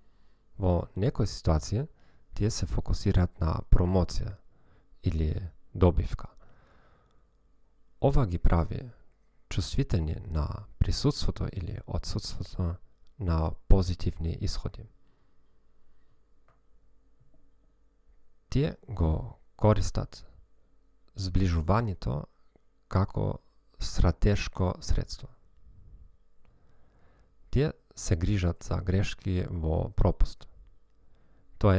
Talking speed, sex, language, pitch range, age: 70 wpm, male, Dutch, 85-105 Hz, 40-59